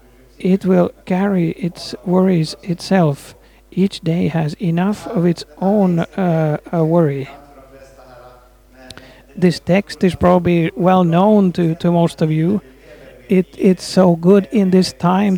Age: 50-69